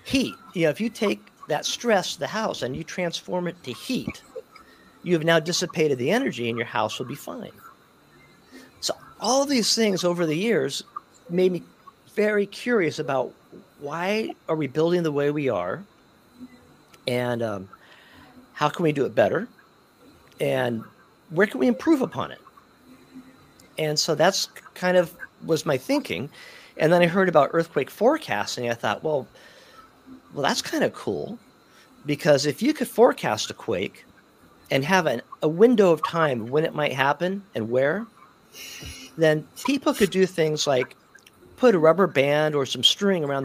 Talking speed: 165 wpm